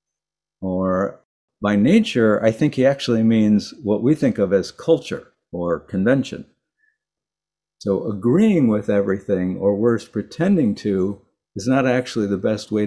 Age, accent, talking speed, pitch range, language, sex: 60-79, American, 140 wpm, 100-125 Hz, English, male